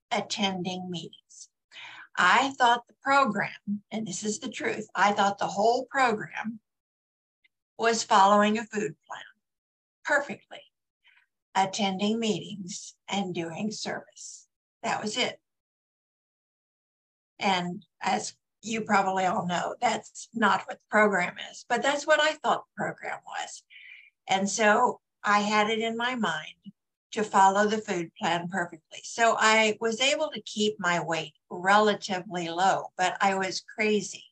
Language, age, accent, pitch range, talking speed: English, 60-79, American, 180-220 Hz, 135 wpm